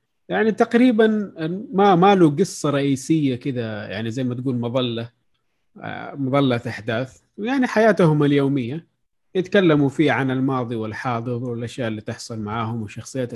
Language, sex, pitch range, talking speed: Arabic, male, 115-145 Hz, 120 wpm